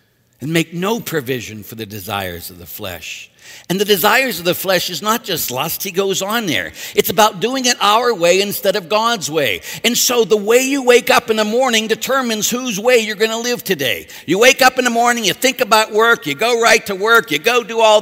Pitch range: 135-215 Hz